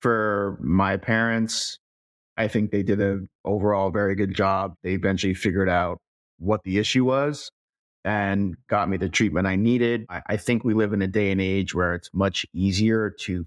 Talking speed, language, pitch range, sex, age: 185 wpm, English, 95-110 Hz, male, 30-49